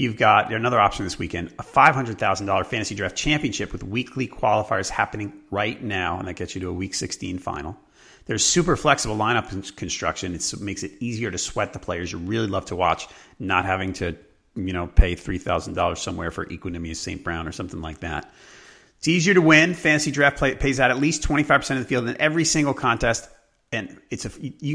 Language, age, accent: English, 30-49, American